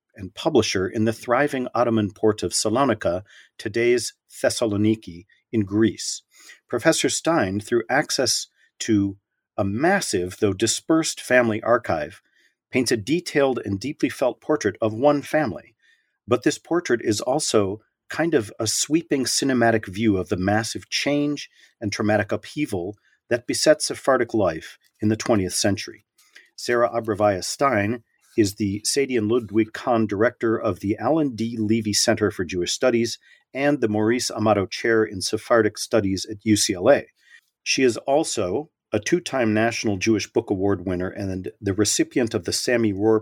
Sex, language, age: male, English, 40-59